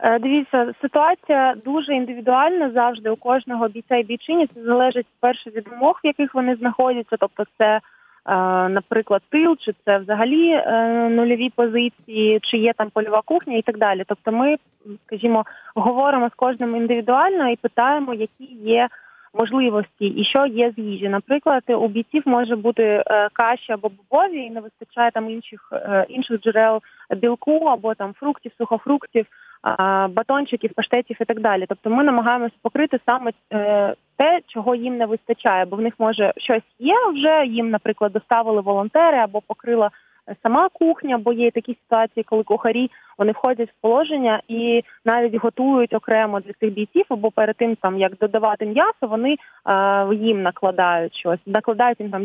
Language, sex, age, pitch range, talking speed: Ukrainian, female, 20-39, 215-255 Hz, 155 wpm